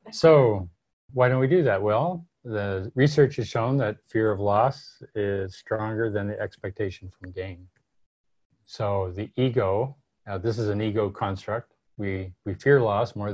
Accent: American